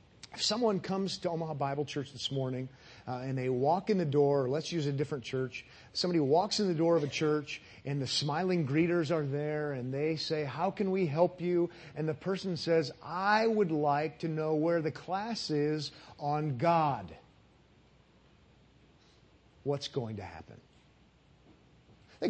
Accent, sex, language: American, male, English